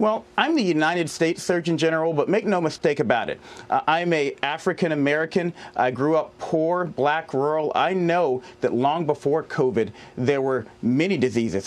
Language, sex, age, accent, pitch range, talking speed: English, male, 40-59, American, 130-170 Hz, 170 wpm